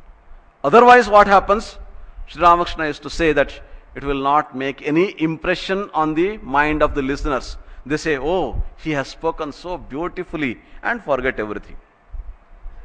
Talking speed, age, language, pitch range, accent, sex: 150 wpm, 50-69, English, 110-175 Hz, Indian, male